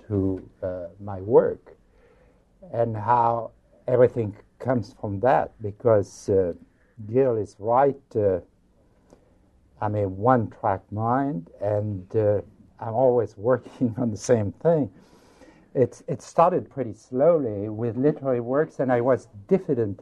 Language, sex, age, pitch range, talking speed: English, male, 60-79, 100-135 Hz, 125 wpm